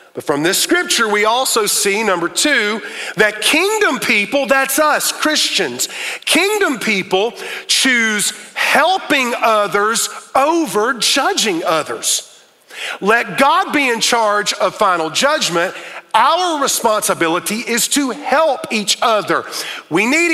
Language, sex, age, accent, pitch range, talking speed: English, male, 40-59, American, 200-265 Hz, 120 wpm